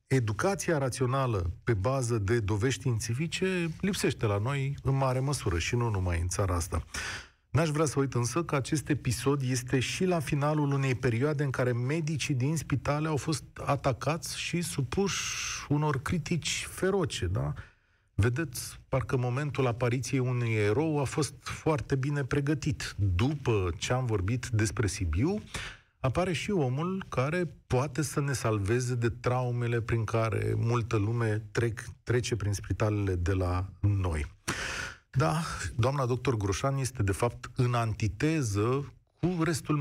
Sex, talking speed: male, 145 wpm